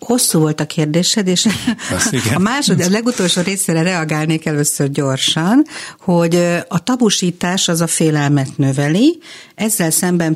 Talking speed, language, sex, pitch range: 125 wpm, Hungarian, female, 155-215 Hz